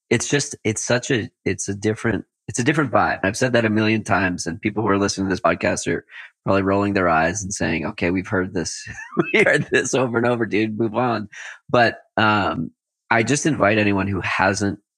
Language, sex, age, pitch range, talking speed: English, male, 20-39, 90-110 Hz, 215 wpm